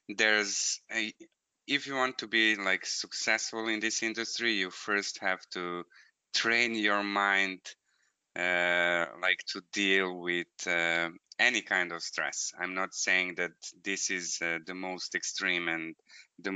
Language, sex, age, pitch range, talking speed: English, male, 20-39, 85-105 Hz, 150 wpm